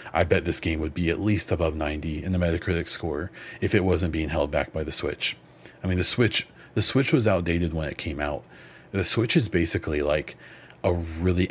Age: 30-49